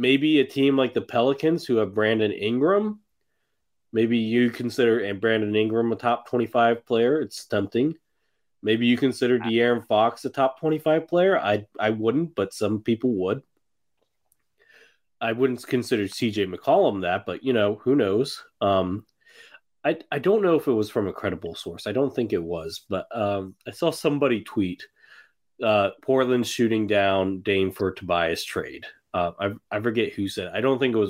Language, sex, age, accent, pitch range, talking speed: English, male, 30-49, American, 100-125 Hz, 175 wpm